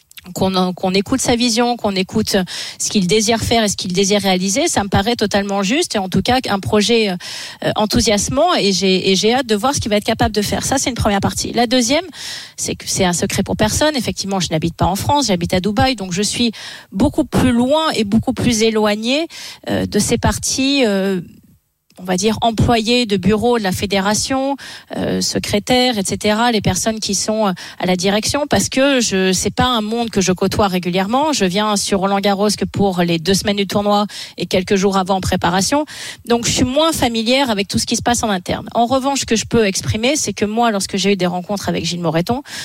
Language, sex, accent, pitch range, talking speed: French, female, French, 190-240 Hz, 225 wpm